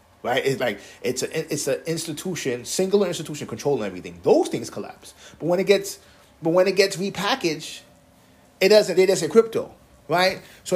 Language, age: English, 30-49